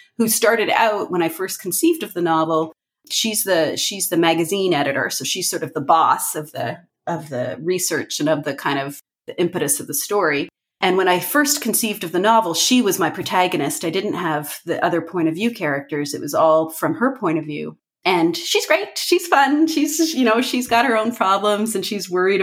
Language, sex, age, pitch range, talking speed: English, female, 30-49, 165-230 Hz, 220 wpm